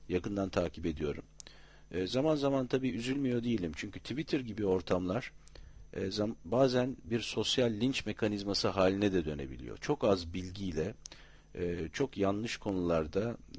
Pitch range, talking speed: 80-105 Hz, 115 wpm